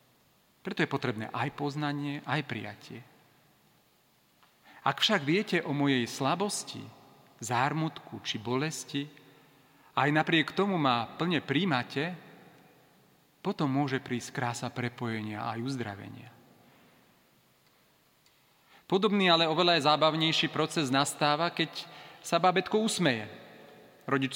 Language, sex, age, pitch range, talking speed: Slovak, male, 40-59, 125-160 Hz, 100 wpm